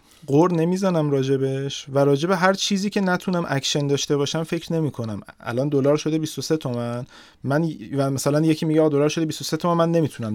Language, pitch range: Persian, 130-165 Hz